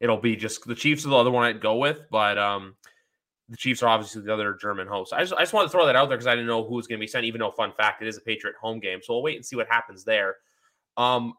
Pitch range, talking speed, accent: 110-130 Hz, 325 wpm, American